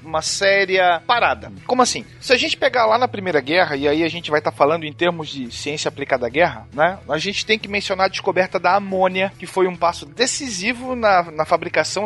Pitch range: 155-205 Hz